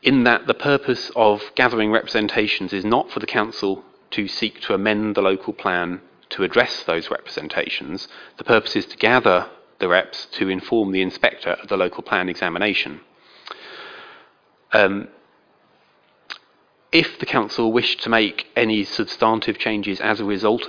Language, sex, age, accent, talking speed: English, male, 40-59, British, 150 wpm